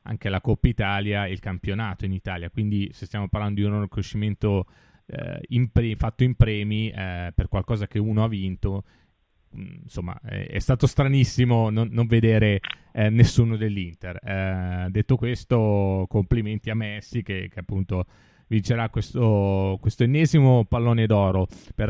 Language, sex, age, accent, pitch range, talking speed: Italian, male, 30-49, native, 100-130 Hz, 155 wpm